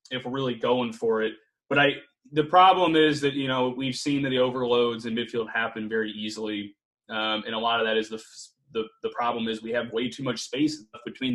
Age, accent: 20-39, American